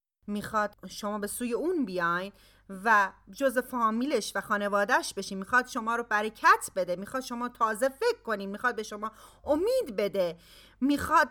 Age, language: 30-49, Persian